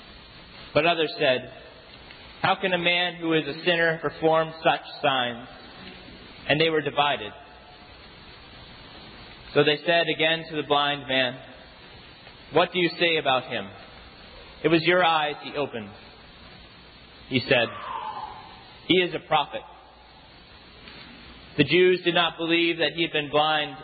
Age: 30-49